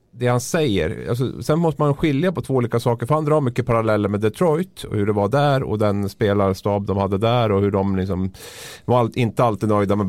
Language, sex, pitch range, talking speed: Swedish, male, 95-135 Hz, 245 wpm